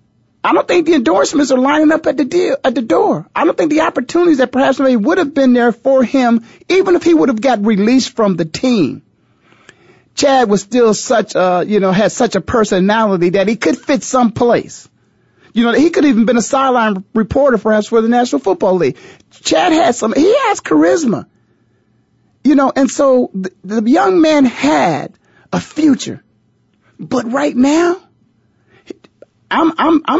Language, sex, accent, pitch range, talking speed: English, male, American, 200-290 Hz, 185 wpm